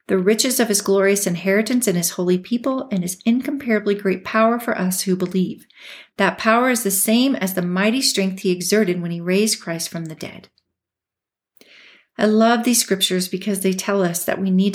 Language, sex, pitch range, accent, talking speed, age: English, female, 180-210 Hz, American, 195 wpm, 40-59